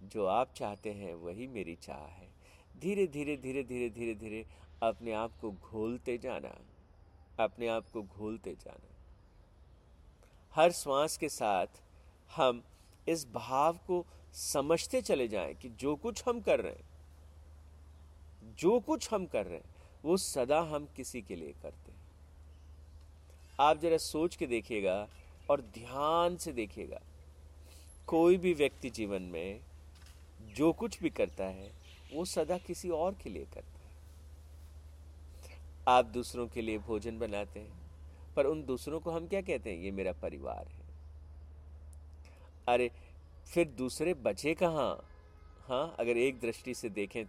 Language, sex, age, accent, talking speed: Hindi, male, 50-69, native, 145 wpm